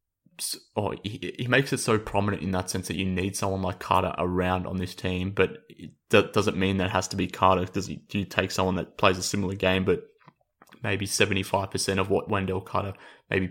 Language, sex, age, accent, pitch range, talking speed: English, male, 20-39, Australian, 95-105 Hz, 215 wpm